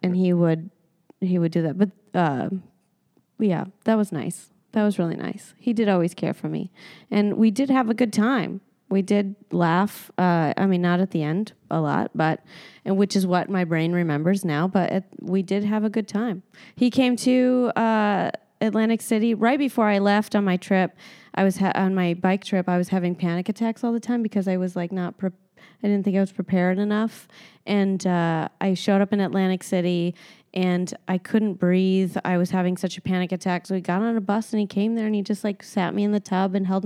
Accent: American